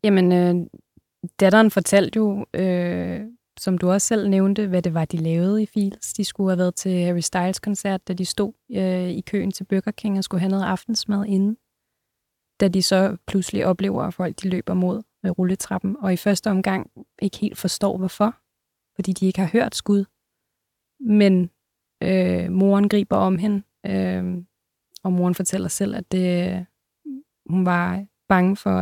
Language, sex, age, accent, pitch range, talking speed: Danish, female, 20-39, native, 185-210 Hz, 175 wpm